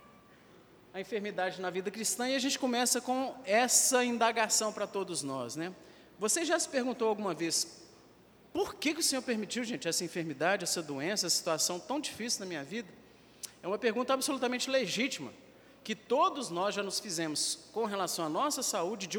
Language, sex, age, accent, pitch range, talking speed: Portuguese, male, 50-69, Brazilian, 180-245 Hz, 180 wpm